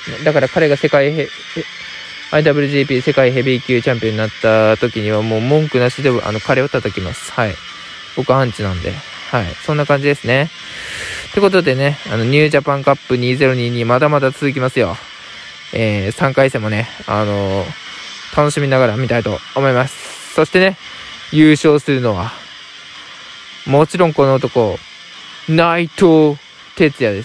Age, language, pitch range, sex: 20-39, Japanese, 115-150 Hz, male